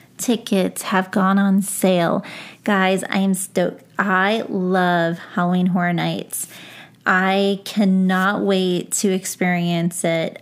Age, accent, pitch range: 30-49, American, 185-215 Hz